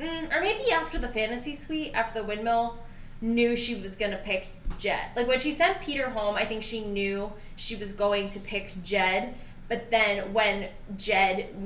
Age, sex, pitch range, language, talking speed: 10-29, female, 195-235 Hz, English, 180 wpm